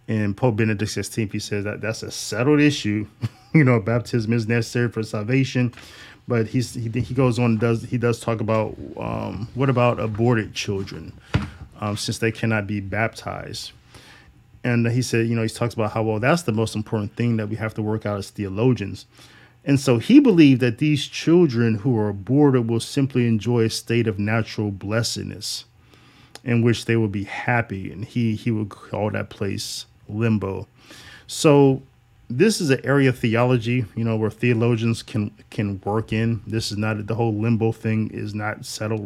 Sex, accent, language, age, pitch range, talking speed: male, American, English, 20-39, 110-125 Hz, 185 wpm